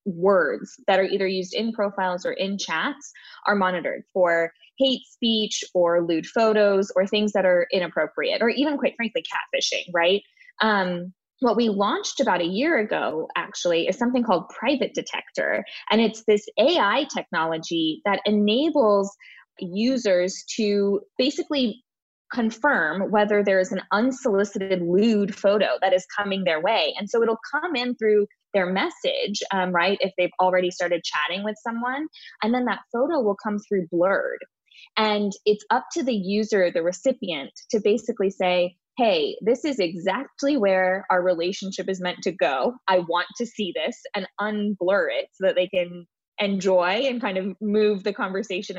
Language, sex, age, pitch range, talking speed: English, female, 20-39, 185-235 Hz, 160 wpm